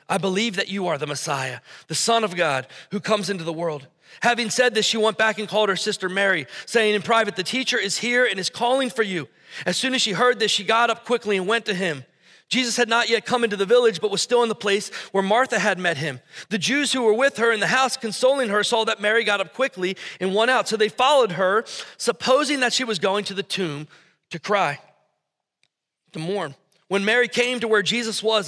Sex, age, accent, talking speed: male, 30-49, American, 240 wpm